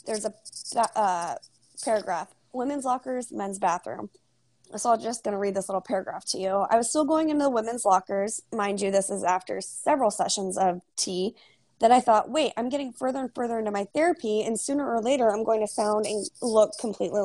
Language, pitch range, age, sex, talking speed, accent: English, 195-230 Hz, 20-39, female, 205 wpm, American